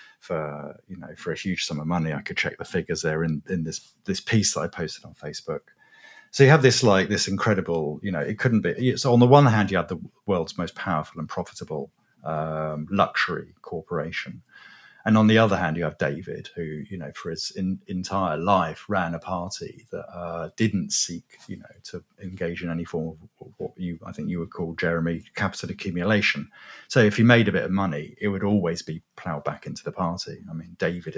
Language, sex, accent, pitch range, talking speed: English, male, British, 85-110 Hz, 220 wpm